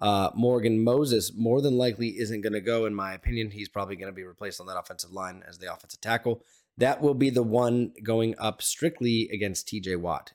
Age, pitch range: 20-39, 95-120 Hz